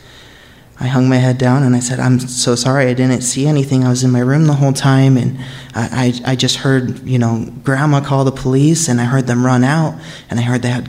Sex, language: male, English